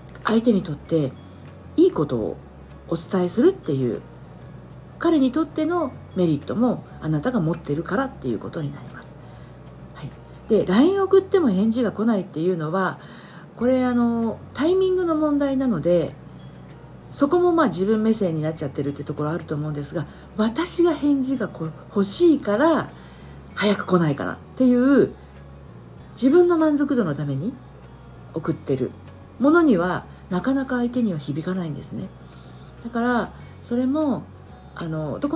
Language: Japanese